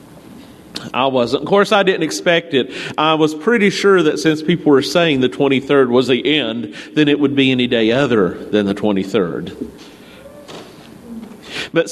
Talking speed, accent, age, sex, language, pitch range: 165 wpm, American, 40-59, male, English, 125-175 Hz